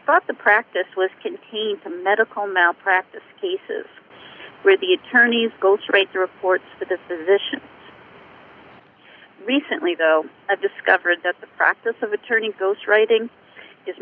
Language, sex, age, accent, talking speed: English, female, 40-59, American, 125 wpm